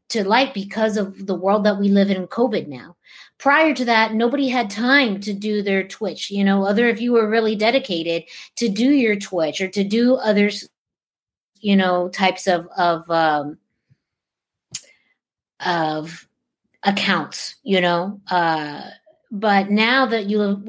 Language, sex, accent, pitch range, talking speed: English, female, American, 175-210 Hz, 155 wpm